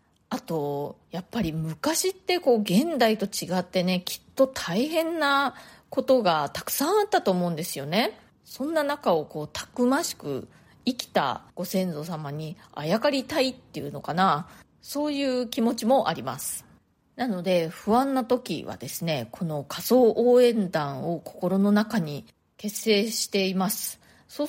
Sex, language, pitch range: female, Japanese, 165-225 Hz